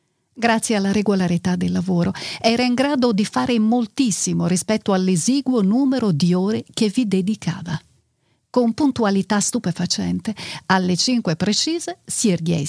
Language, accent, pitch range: Italian, native, 170-240 Hz